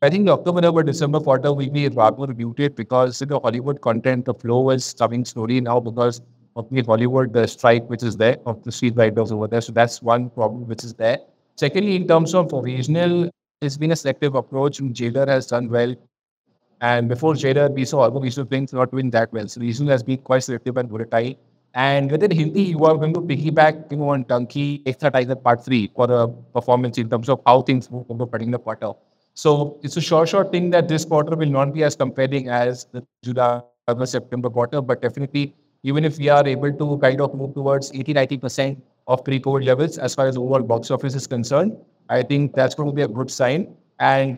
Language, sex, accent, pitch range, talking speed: English, male, Indian, 125-150 Hz, 210 wpm